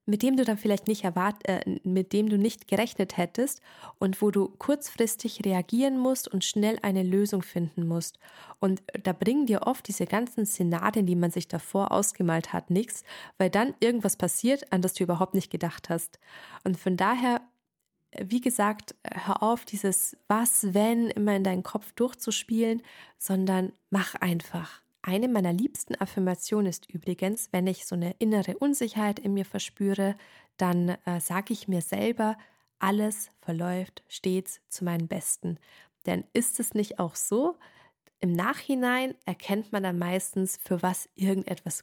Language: German